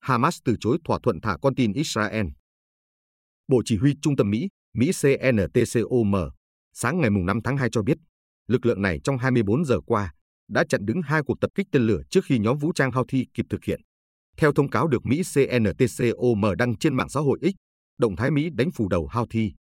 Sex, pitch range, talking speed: male, 100-135 Hz, 210 wpm